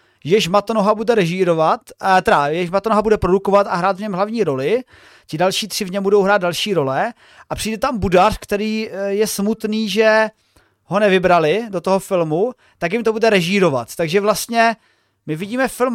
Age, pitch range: 30-49, 190-240 Hz